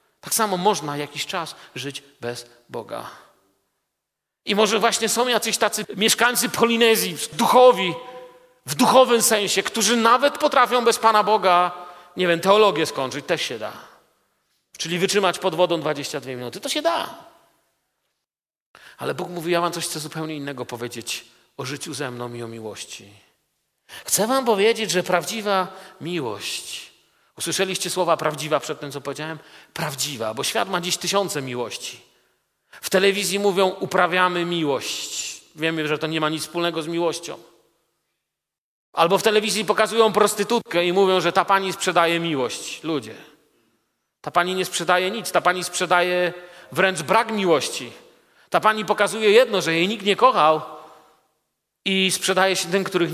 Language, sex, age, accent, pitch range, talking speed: Polish, male, 40-59, native, 160-215 Hz, 150 wpm